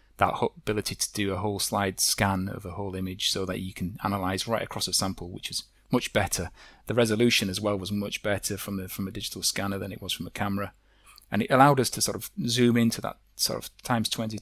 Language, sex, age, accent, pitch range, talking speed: English, male, 30-49, British, 95-110 Hz, 240 wpm